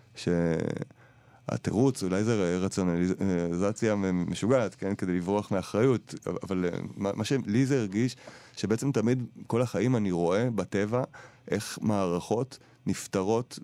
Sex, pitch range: male, 95-115 Hz